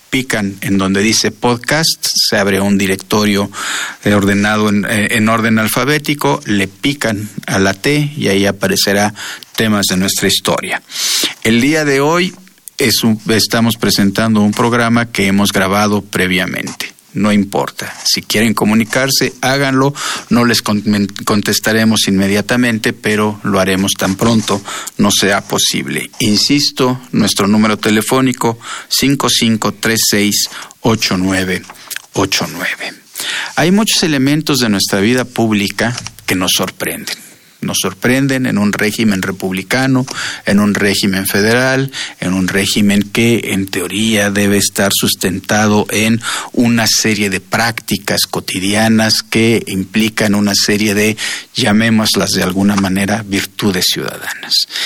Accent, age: Mexican, 50-69